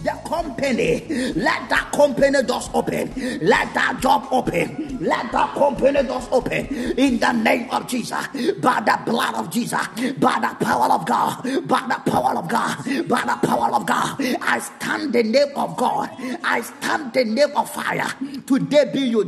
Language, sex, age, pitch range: Japanese, male, 30-49, 240-290 Hz